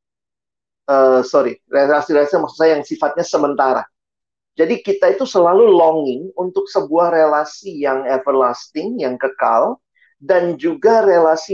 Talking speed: 120 wpm